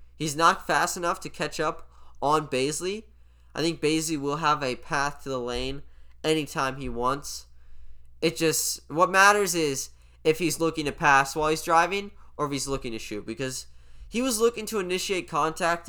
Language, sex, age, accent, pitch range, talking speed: English, male, 10-29, American, 115-170 Hz, 180 wpm